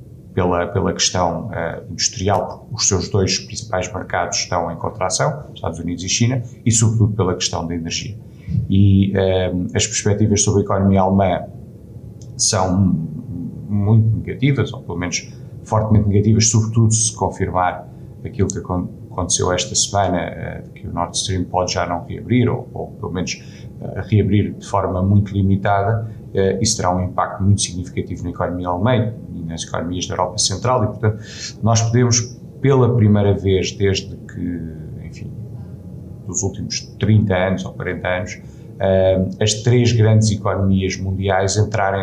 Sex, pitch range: male, 95-115 Hz